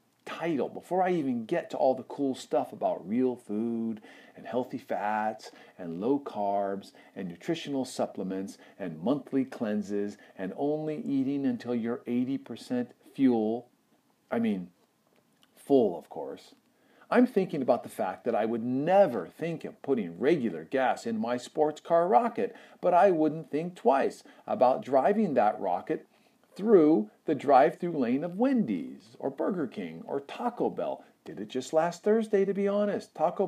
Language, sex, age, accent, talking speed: English, male, 50-69, American, 155 wpm